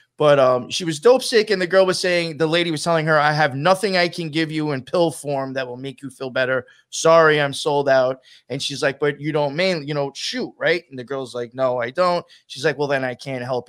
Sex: male